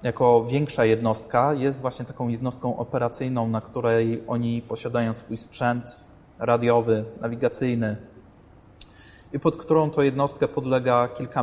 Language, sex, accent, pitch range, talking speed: Polish, male, native, 120-150 Hz, 120 wpm